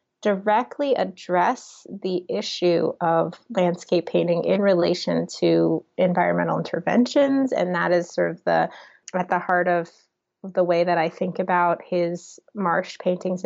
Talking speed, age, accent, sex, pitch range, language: 140 wpm, 20-39, American, female, 175-200 Hz, English